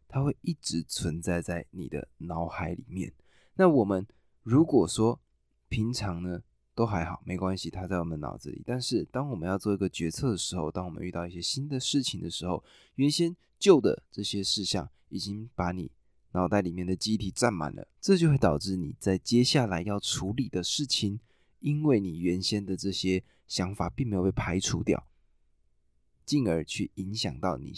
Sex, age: male, 20-39